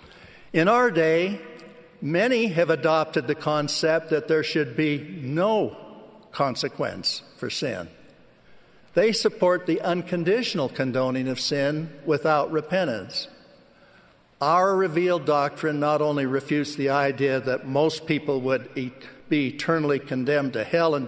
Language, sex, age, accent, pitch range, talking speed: English, male, 60-79, American, 140-170 Hz, 120 wpm